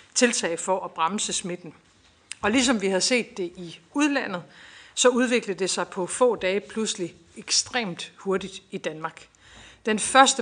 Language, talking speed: Danish, 155 wpm